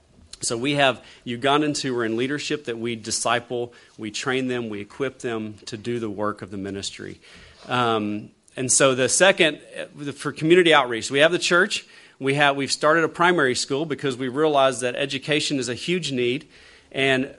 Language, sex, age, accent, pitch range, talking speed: English, male, 40-59, American, 115-155 Hz, 185 wpm